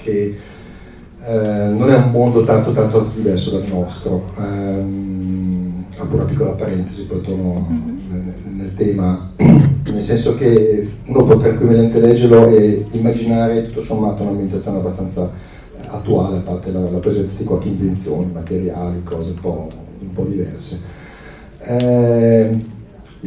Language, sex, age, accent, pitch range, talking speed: Italian, male, 40-59, native, 90-115 Hz, 130 wpm